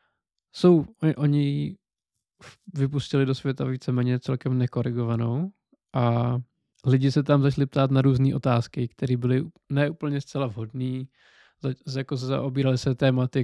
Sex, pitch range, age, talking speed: male, 125-140 Hz, 20-39, 125 wpm